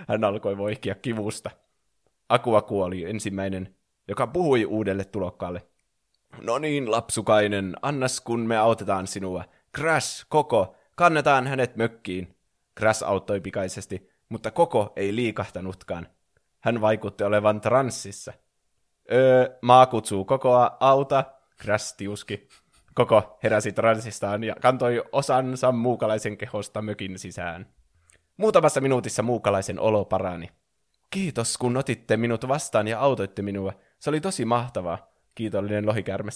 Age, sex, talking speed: 20-39, male, 115 wpm